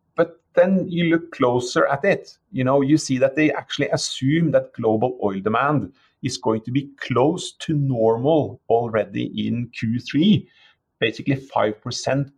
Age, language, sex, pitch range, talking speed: 30-49, English, male, 115-165 Hz, 145 wpm